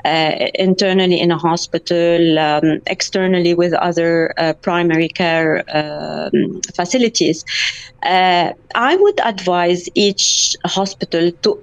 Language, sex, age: English, female, 30-49